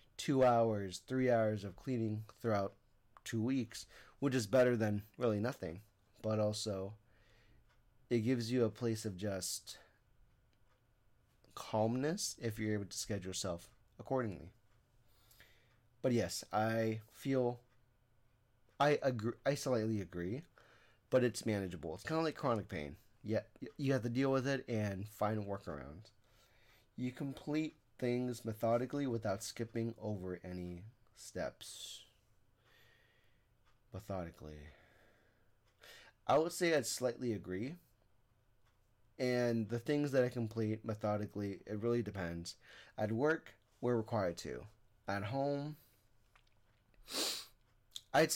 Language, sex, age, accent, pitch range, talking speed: English, male, 30-49, American, 105-125 Hz, 120 wpm